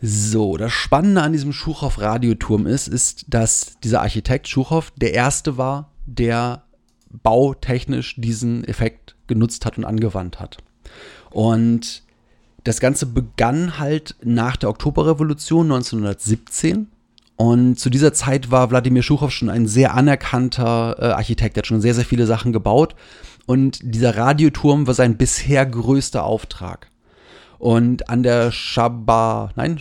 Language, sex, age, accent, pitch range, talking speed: German, male, 30-49, German, 115-140 Hz, 135 wpm